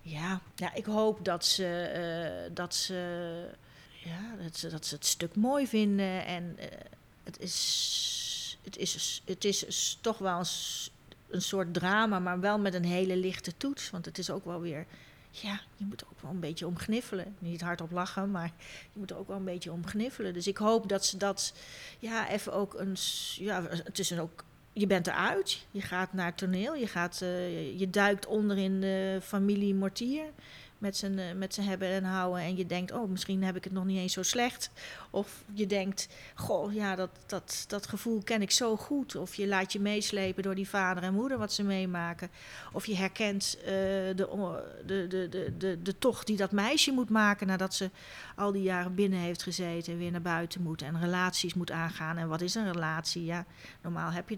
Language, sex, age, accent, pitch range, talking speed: Dutch, female, 40-59, Dutch, 175-200 Hz, 205 wpm